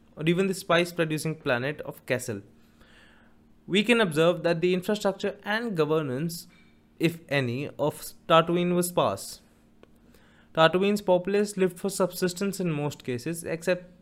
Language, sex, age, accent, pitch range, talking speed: English, male, 20-39, Indian, 125-170 Hz, 135 wpm